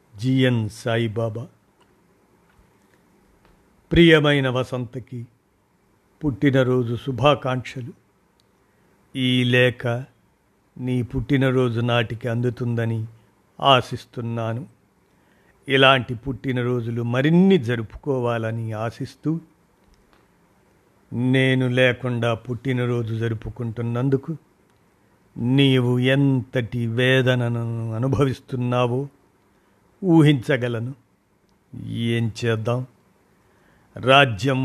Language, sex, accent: Telugu, male, native